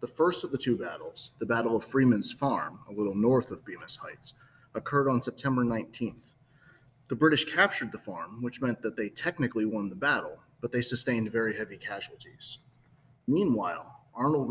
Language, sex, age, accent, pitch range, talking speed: English, male, 30-49, American, 115-135 Hz, 175 wpm